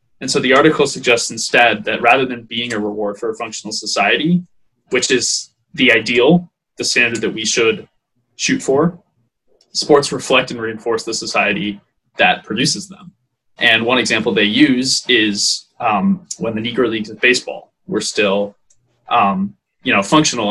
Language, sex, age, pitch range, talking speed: English, male, 20-39, 115-145 Hz, 155 wpm